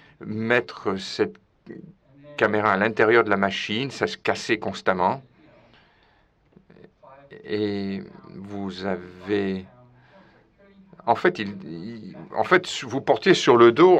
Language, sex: French, male